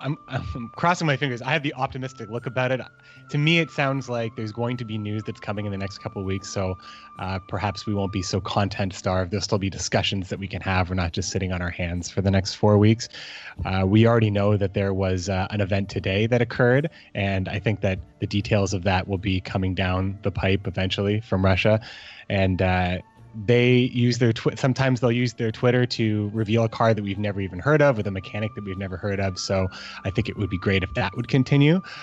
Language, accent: English, American